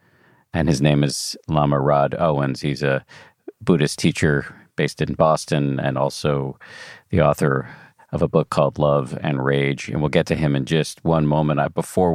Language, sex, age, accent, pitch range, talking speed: English, male, 40-59, American, 70-80 Hz, 175 wpm